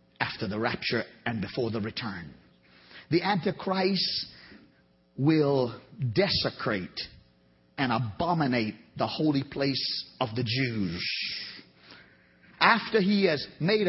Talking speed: 100 wpm